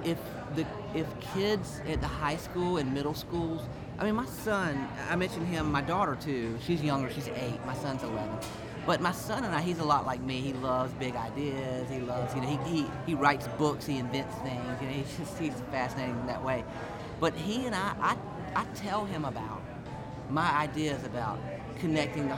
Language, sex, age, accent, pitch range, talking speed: English, male, 30-49, American, 130-165 Hz, 210 wpm